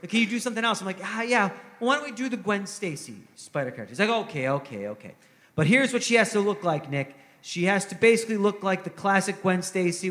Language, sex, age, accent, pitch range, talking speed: English, male, 30-49, American, 155-195 Hz, 250 wpm